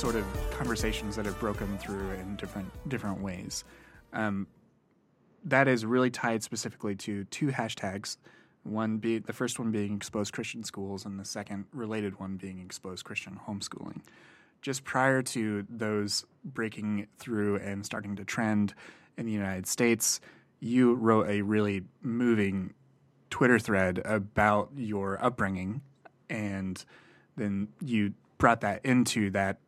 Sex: male